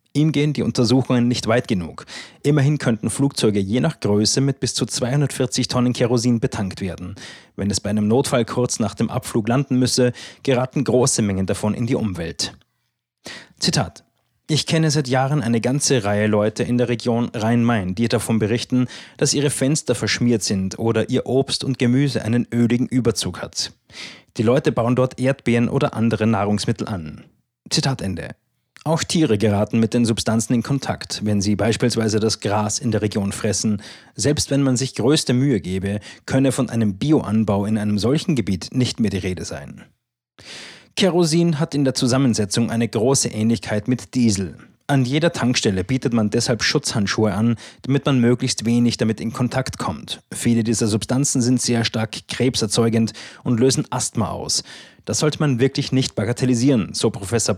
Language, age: German, 30-49